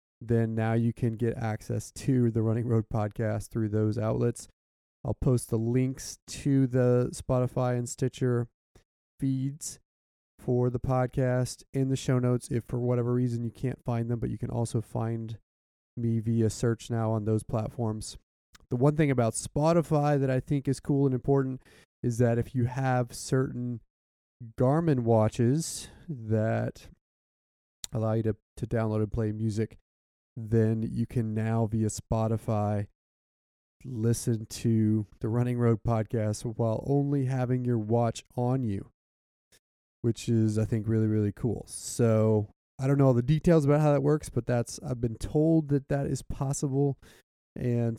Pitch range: 110-125 Hz